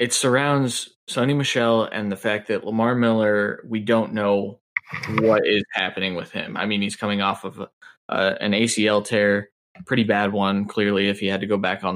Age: 20-39